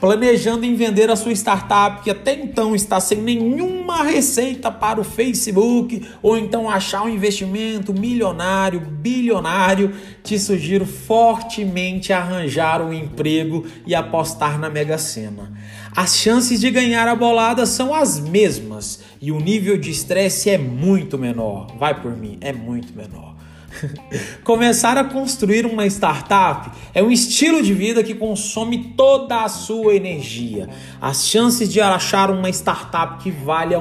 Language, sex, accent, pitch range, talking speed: Portuguese, male, Brazilian, 165-230 Hz, 145 wpm